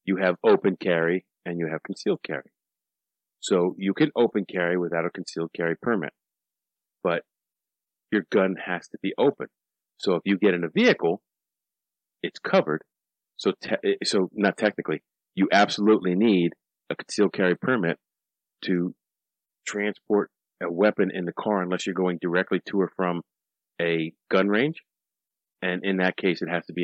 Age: 40-59